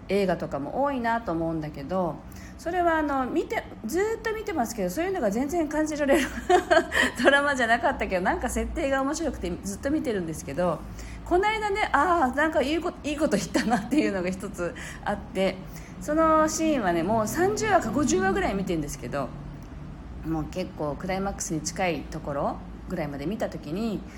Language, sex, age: Japanese, female, 40-59